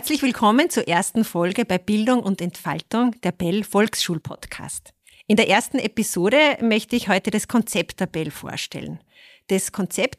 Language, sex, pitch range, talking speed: German, female, 180-235 Hz, 155 wpm